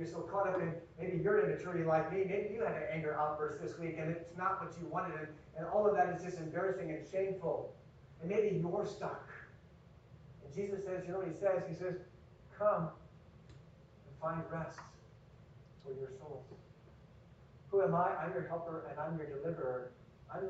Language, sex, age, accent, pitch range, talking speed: English, male, 40-59, American, 140-170 Hz, 195 wpm